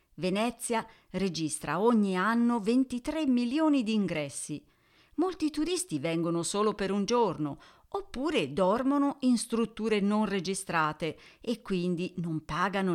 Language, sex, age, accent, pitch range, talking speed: Italian, female, 40-59, native, 160-235 Hz, 115 wpm